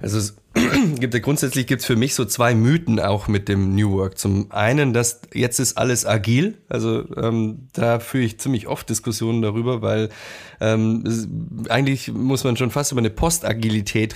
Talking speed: 170 wpm